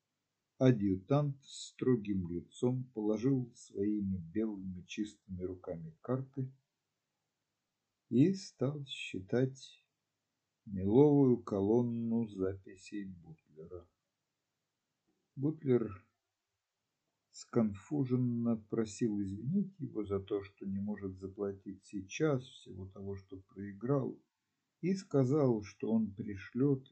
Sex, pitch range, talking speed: male, 95-135 Hz, 85 wpm